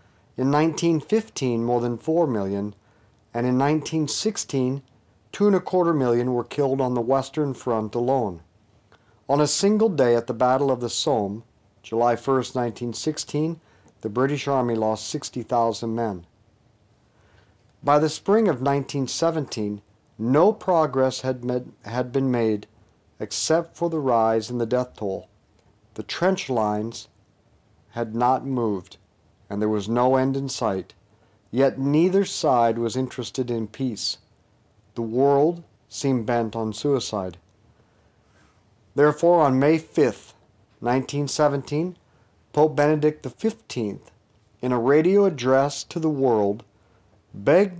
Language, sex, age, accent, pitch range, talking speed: English, male, 50-69, American, 110-145 Hz, 125 wpm